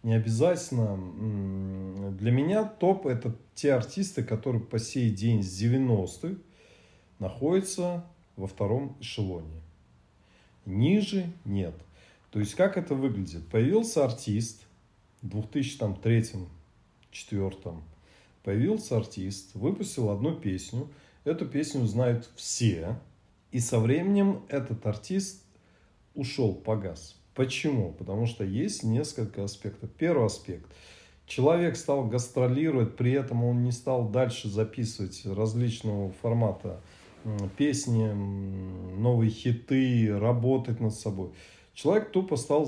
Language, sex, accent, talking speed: Russian, male, native, 105 wpm